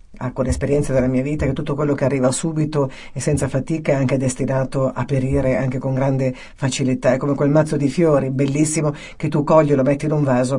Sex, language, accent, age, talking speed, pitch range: female, Italian, native, 50-69, 220 wpm, 130-155 Hz